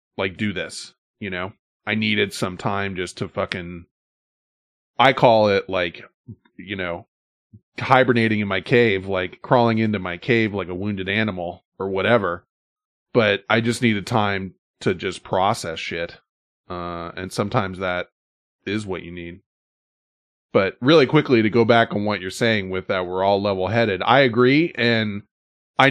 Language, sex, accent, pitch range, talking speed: English, male, American, 100-125 Hz, 160 wpm